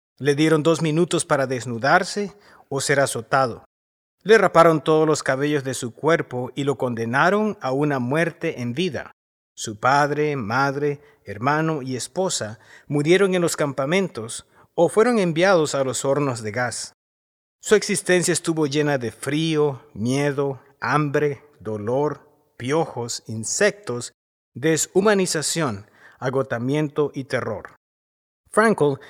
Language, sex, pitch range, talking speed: English, male, 125-165 Hz, 120 wpm